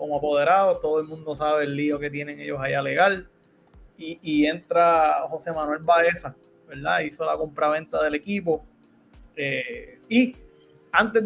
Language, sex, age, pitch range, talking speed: Spanish, male, 20-39, 150-190 Hz, 150 wpm